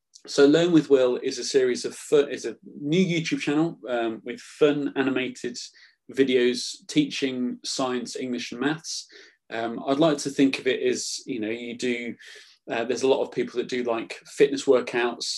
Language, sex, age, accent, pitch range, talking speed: English, male, 20-39, British, 125-165 Hz, 180 wpm